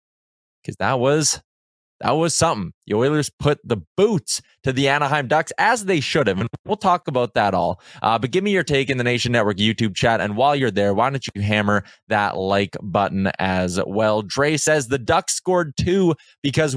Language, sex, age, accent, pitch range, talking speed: English, male, 20-39, American, 115-160 Hz, 205 wpm